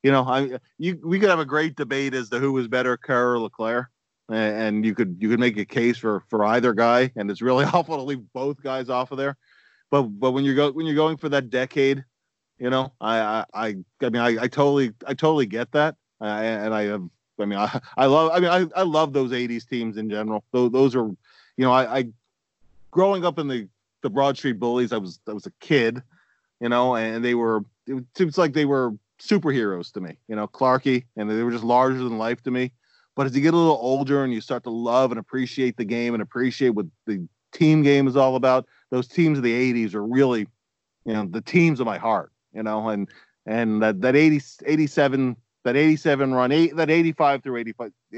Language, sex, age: English, male, 30-49